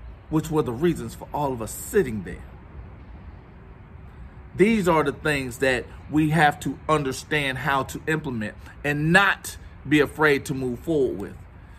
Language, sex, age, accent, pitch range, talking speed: English, male, 40-59, American, 85-140 Hz, 155 wpm